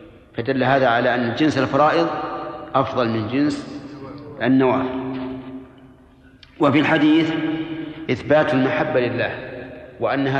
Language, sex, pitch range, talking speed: Arabic, male, 130-150 Hz, 90 wpm